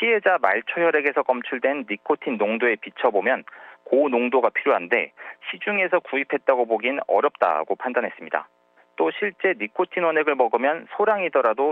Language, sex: Korean, male